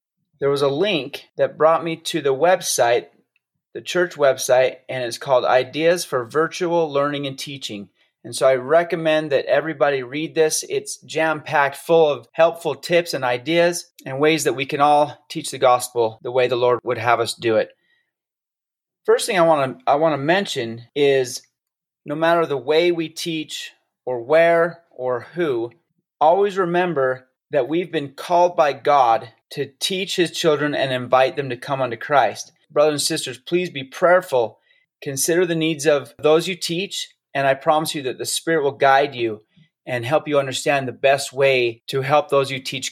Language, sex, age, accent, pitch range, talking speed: English, male, 30-49, American, 130-170 Hz, 180 wpm